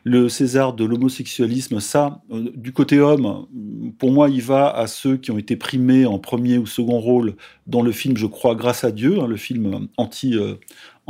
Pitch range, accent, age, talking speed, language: 115-145 Hz, French, 40-59, 200 wpm, French